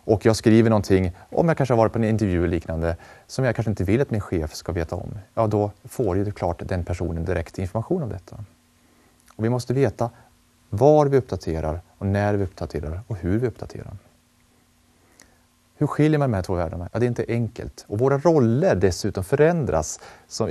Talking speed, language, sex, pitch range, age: 195 wpm, Swedish, male, 95-125 Hz, 30-49